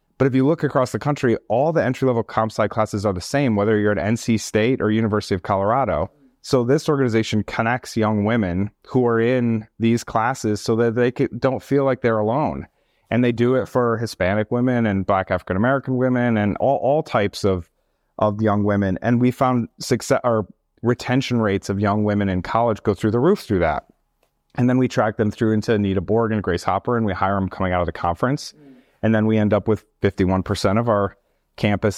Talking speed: 210 wpm